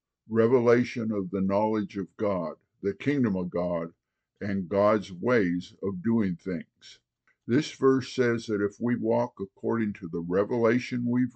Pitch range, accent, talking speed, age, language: 95-120 Hz, American, 150 wpm, 50-69, English